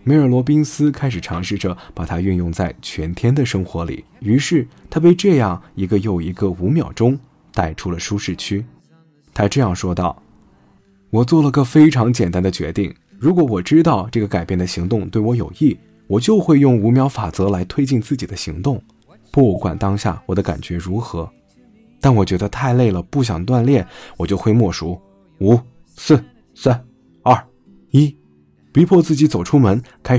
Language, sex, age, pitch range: Chinese, male, 20-39, 90-140 Hz